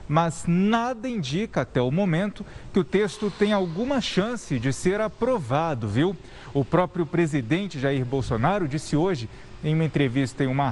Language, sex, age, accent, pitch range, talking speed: Portuguese, male, 40-59, Brazilian, 140-210 Hz, 155 wpm